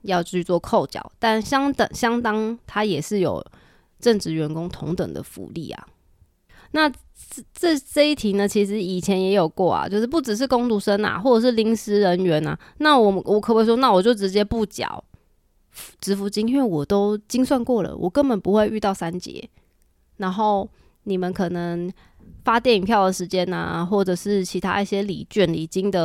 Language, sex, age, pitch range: Chinese, female, 20-39, 180-225 Hz